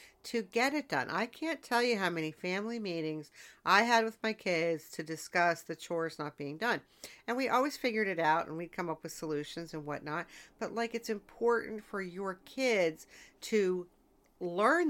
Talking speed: 190 wpm